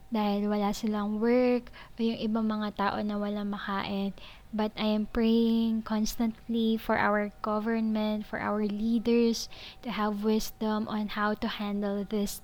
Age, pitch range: 20-39, 210-230 Hz